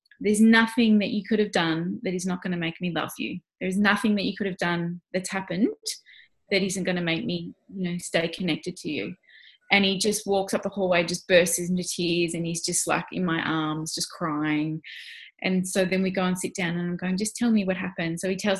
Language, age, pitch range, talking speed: English, 20-39, 175-210 Hz, 245 wpm